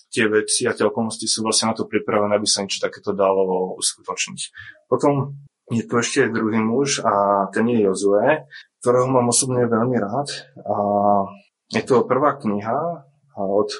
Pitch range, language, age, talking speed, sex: 110-130 Hz, Slovak, 20-39, 155 wpm, male